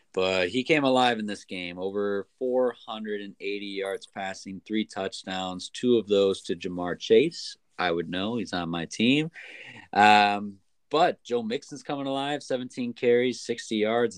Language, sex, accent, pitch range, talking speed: English, male, American, 95-115 Hz, 150 wpm